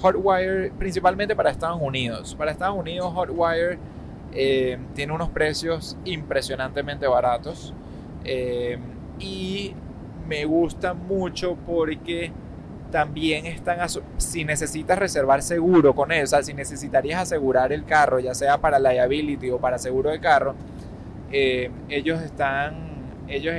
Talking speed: 125 wpm